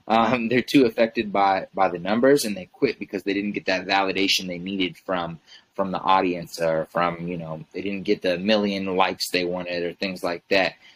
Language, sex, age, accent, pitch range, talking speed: English, male, 20-39, American, 90-105 Hz, 215 wpm